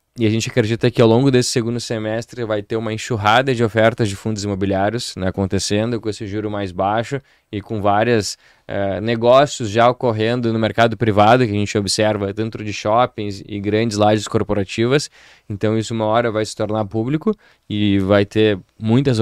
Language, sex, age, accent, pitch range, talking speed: Portuguese, male, 20-39, Brazilian, 105-130 Hz, 185 wpm